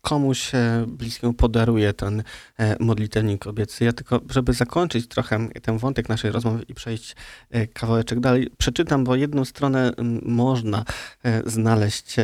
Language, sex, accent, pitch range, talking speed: Polish, male, native, 115-125 Hz, 125 wpm